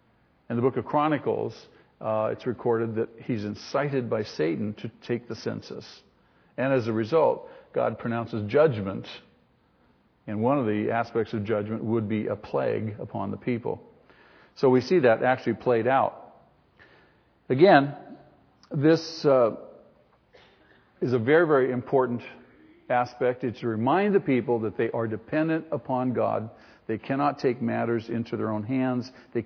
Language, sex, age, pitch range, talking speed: English, male, 50-69, 115-145 Hz, 150 wpm